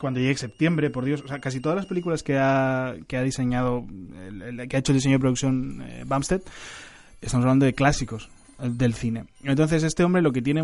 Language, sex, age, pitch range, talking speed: Spanish, male, 20-39, 125-150 Hz, 210 wpm